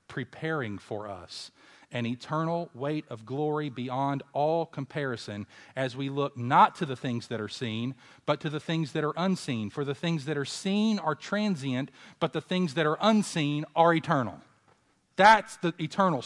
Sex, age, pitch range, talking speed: male, 40-59, 125-185 Hz, 175 wpm